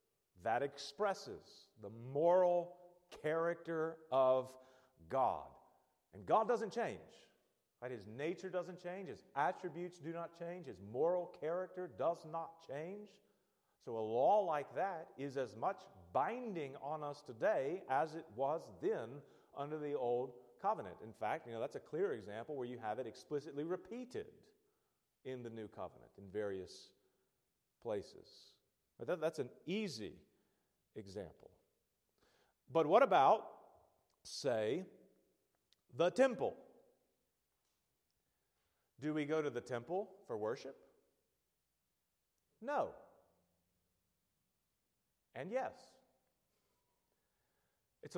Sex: male